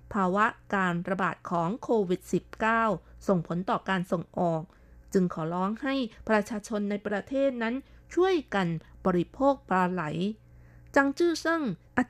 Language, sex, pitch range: Thai, female, 180-230 Hz